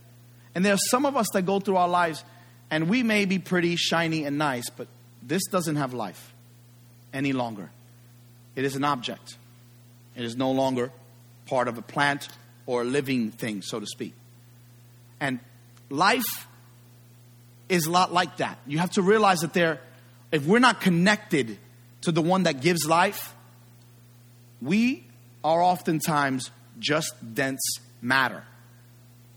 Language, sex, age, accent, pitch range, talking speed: English, male, 30-49, American, 120-160 Hz, 150 wpm